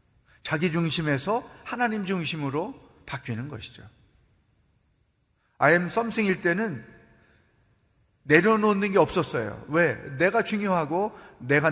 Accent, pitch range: native, 120-175 Hz